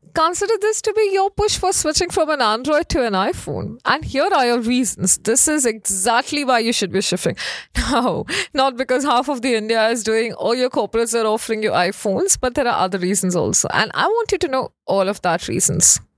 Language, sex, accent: English, female, Indian